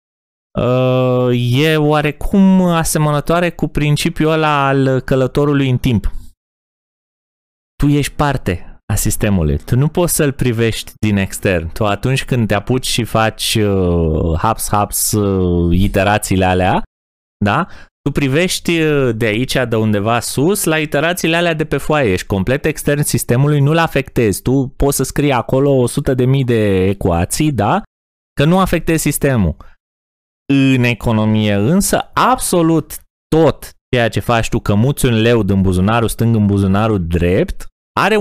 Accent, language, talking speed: native, Romanian, 135 wpm